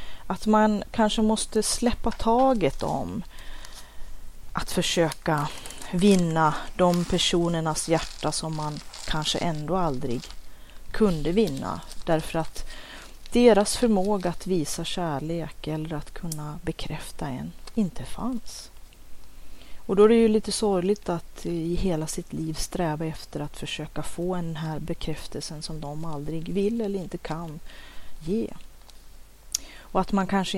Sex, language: female, Swedish